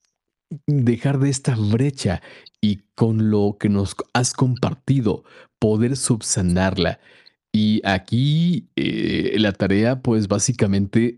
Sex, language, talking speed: male, Spanish, 105 wpm